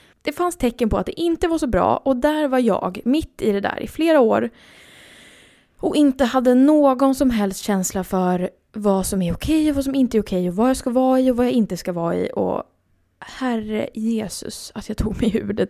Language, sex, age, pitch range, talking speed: Swedish, female, 20-39, 195-265 Hz, 235 wpm